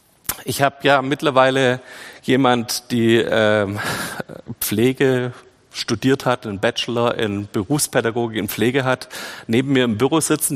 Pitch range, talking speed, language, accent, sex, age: 115-145 Hz, 125 wpm, German, German, male, 40-59